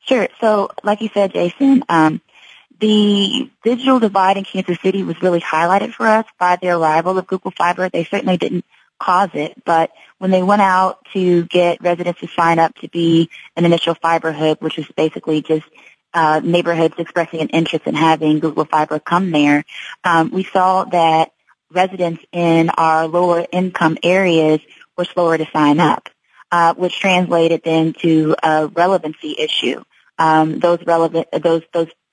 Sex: female